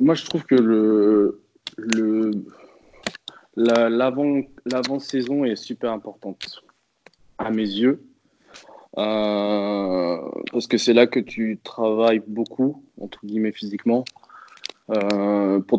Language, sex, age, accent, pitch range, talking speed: French, male, 20-39, French, 105-125 Hz, 110 wpm